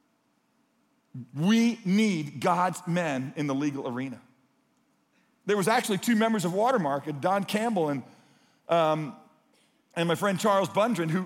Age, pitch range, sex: 40-59, 155-200 Hz, male